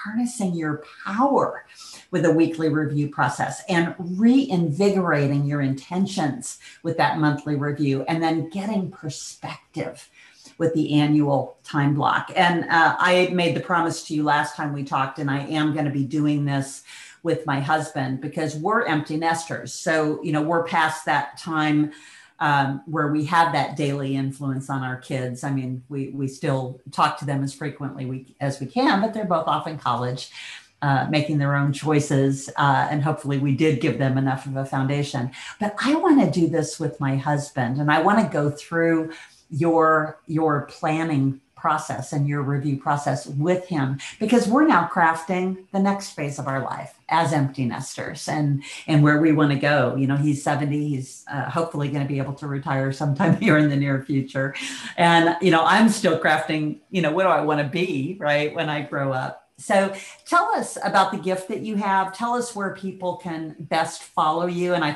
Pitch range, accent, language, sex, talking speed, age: 140-165 Hz, American, English, female, 190 wpm, 50-69